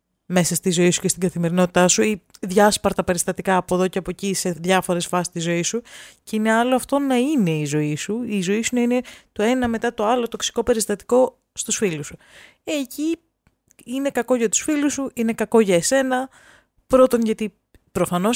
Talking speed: 195 wpm